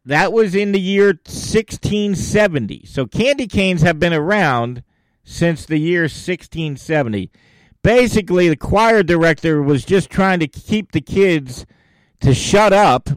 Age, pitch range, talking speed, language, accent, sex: 50-69, 140-200 Hz, 135 wpm, English, American, male